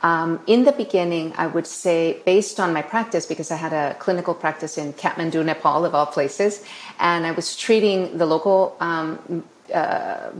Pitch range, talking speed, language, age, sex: 165-195 Hz, 180 wpm, English, 30-49, female